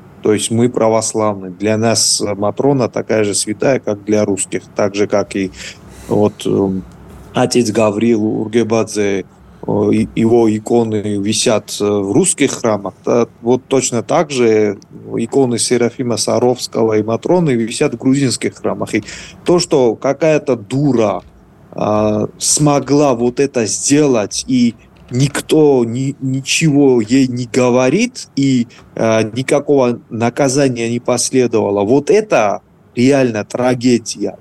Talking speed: 115 wpm